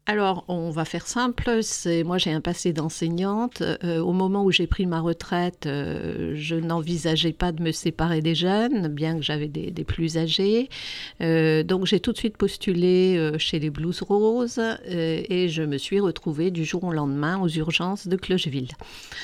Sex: female